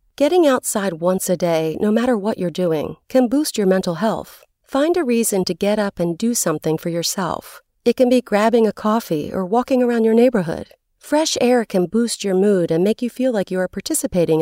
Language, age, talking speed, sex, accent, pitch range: English, 40-59, 210 wpm, female, American, 175-245 Hz